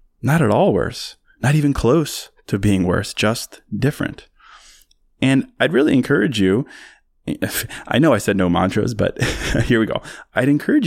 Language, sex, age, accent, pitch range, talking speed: English, male, 20-39, American, 95-115 Hz, 160 wpm